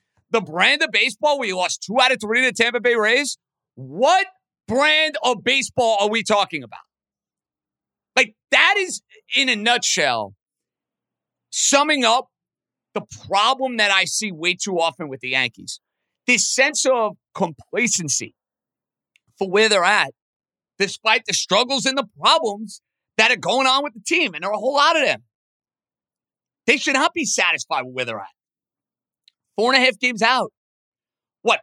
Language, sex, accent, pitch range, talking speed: English, male, American, 190-260 Hz, 165 wpm